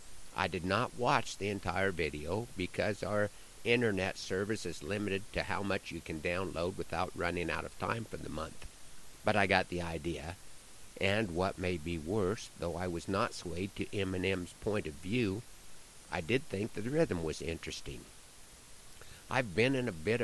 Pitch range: 85-110 Hz